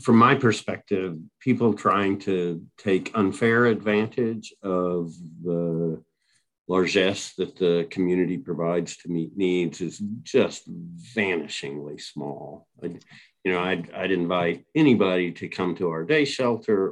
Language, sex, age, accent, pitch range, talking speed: English, male, 50-69, American, 95-120 Hz, 130 wpm